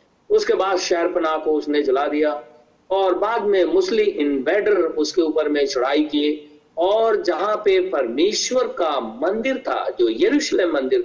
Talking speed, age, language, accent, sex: 140 wpm, 50-69, Hindi, native, male